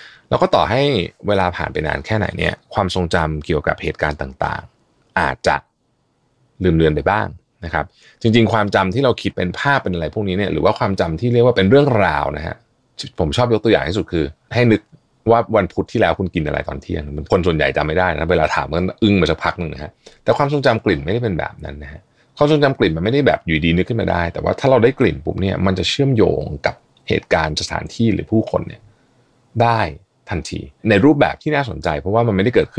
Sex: male